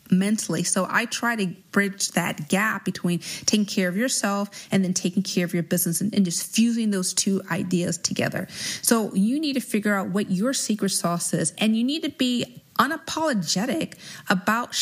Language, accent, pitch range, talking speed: English, American, 185-220 Hz, 180 wpm